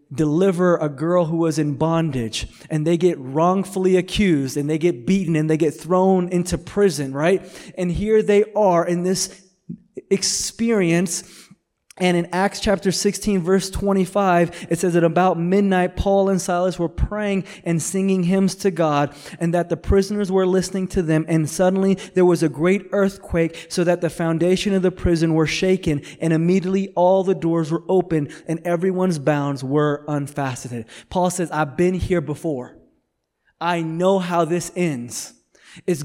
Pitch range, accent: 160-190 Hz, American